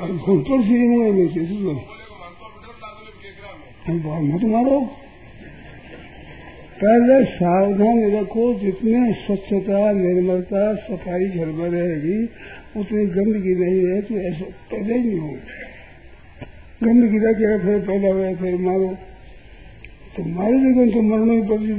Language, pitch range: Hindi, 180-220 Hz